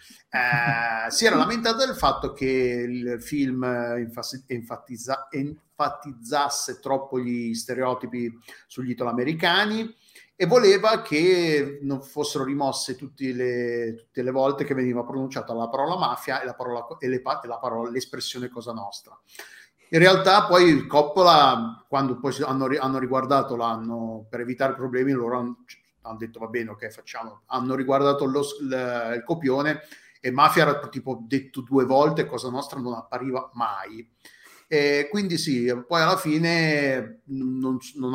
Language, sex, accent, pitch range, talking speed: Italian, male, native, 120-145 Hz, 145 wpm